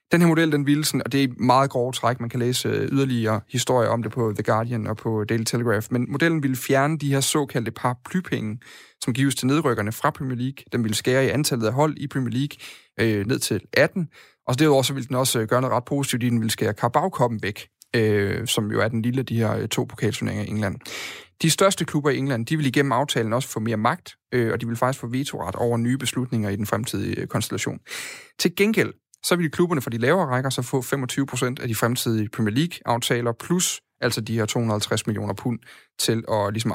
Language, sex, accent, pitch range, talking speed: Danish, male, native, 115-140 Hz, 225 wpm